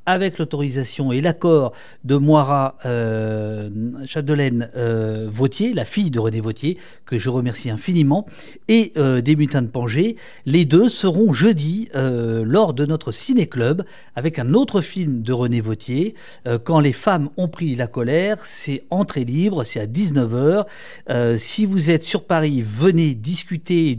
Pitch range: 125-175 Hz